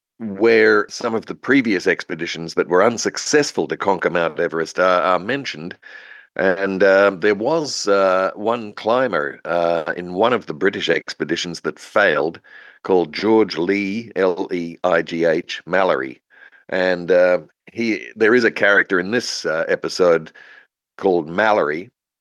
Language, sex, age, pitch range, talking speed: English, male, 50-69, 95-130 Hz, 135 wpm